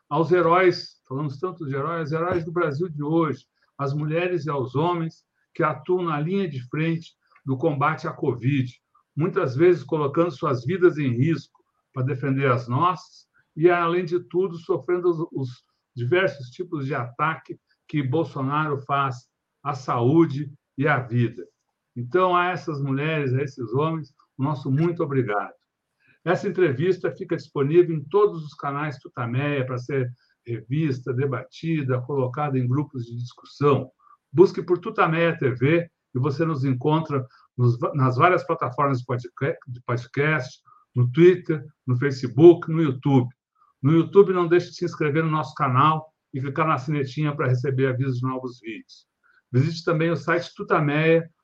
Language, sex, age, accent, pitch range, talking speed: Portuguese, male, 60-79, Brazilian, 135-170 Hz, 150 wpm